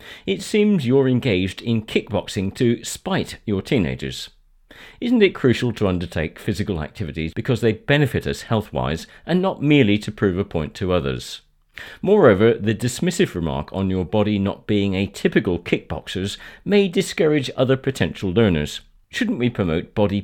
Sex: male